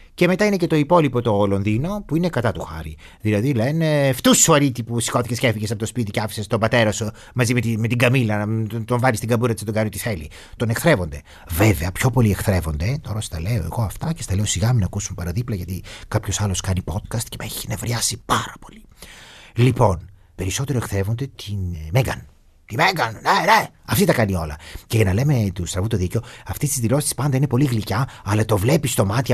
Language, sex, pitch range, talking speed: Greek, male, 100-145 Hz, 220 wpm